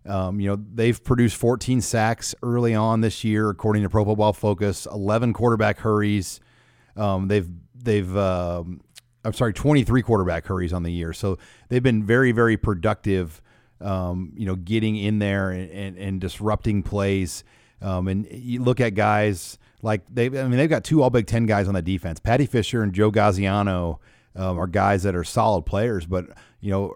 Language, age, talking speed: English, 40-59, 185 wpm